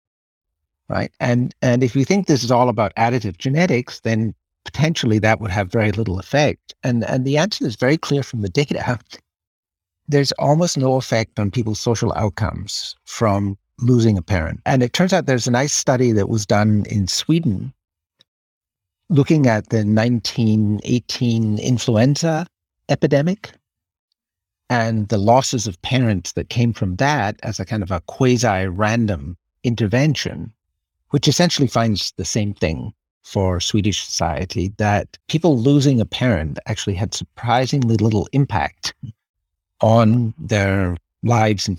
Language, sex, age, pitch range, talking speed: English, male, 60-79, 105-130 Hz, 145 wpm